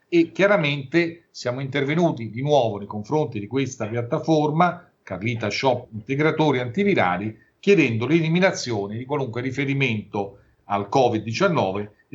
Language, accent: Italian, native